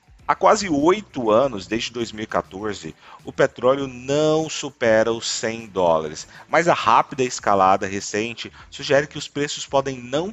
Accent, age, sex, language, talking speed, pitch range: Brazilian, 40-59, male, Portuguese, 140 wpm, 100-140 Hz